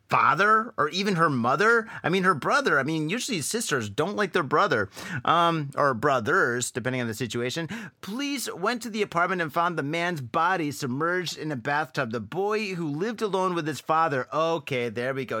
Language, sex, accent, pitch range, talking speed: English, male, American, 135-180 Hz, 195 wpm